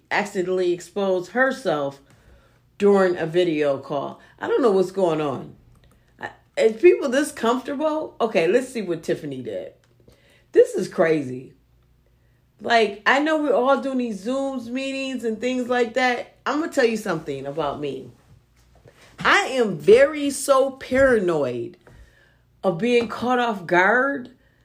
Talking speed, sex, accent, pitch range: 140 wpm, female, American, 180-260 Hz